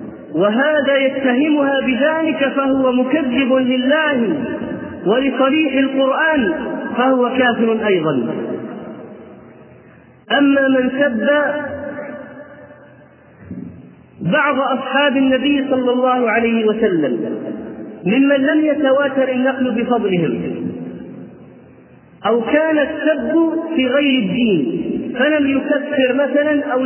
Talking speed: 80 wpm